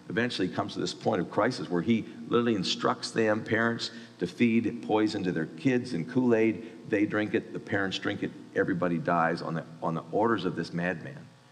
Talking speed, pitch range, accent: 200 wpm, 75-115 Hz, American